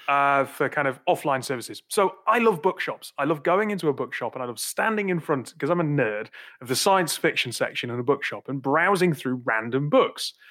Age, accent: 30-49, British